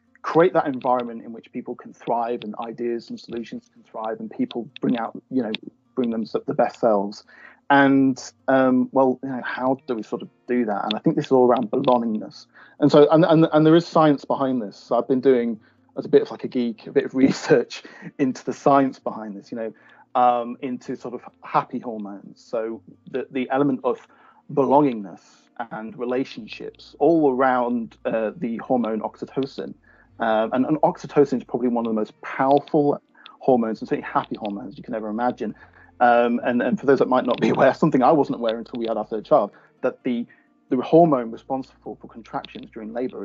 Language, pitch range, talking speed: English, 115-140 Hz, 205 wpm